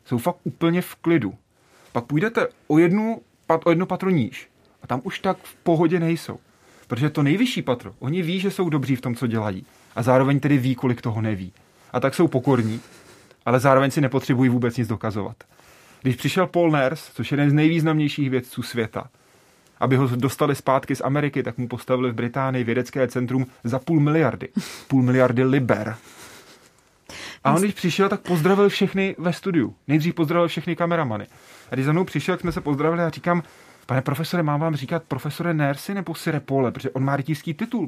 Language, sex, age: Czech, male, 30-49